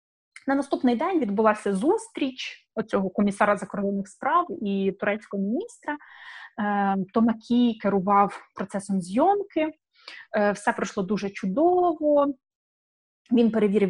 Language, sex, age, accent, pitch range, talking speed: Ukrainian, female, 20-39, native, 200-245 Hz, 95 wpm